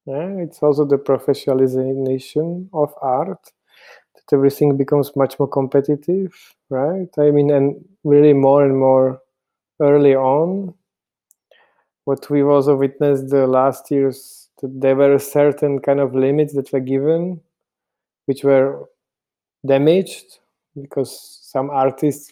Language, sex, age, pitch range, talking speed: English, male, 20-39, 130-150 Hz, 125 wpm